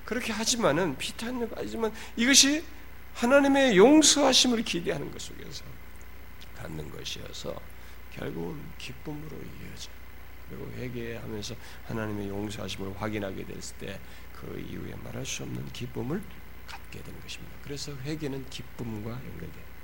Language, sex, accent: Korean, male, native